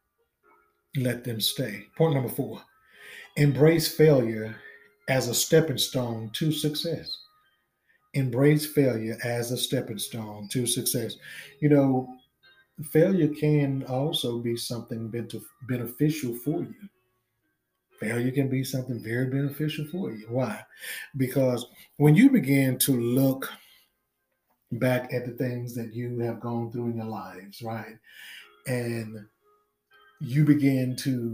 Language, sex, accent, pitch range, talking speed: English, male, American, 120-145 Hz, 125 wpm